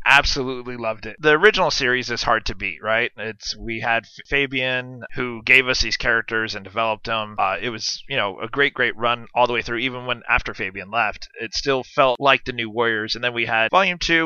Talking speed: 225 wpm